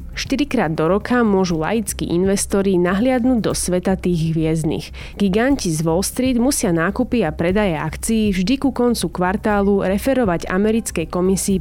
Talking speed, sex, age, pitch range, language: 140 wpm, female, 30-49, 170-220 Hz, Slovak